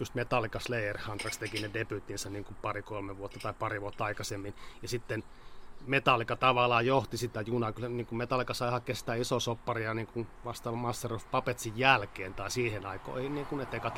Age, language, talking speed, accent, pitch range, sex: 30-49, Finnish, 170 wpm, native, 110-130 Hz, male